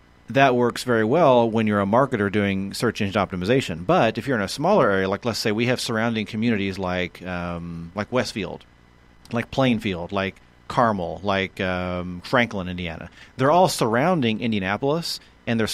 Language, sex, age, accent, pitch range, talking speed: English, male, 40-59, American, 95-120 Hz, 170 wpm